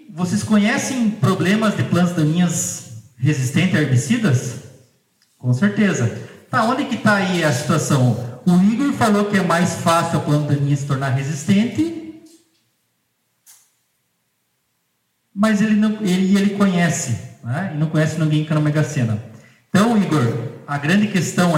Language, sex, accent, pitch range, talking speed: Portuguese, male, Brazilian, 145-190 Hz, 145 wpm